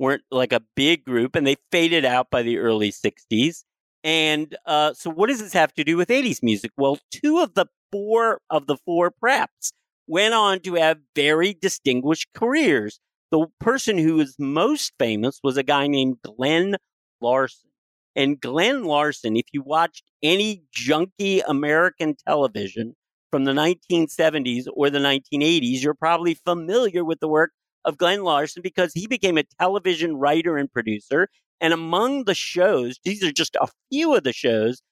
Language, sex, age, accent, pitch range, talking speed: English, male, 50-69, American, 135-175 Hz, 165 wpm